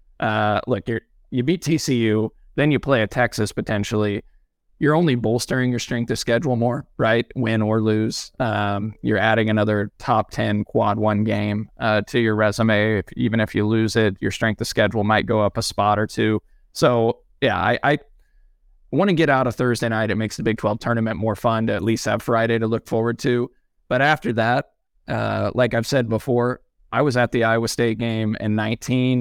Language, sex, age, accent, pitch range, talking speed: English, male, 20-39, American, 105-120 Hz, 195 wpm